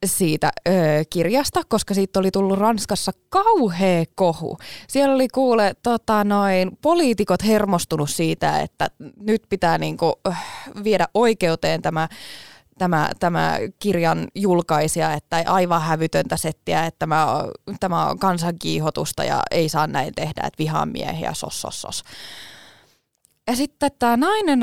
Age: 20-39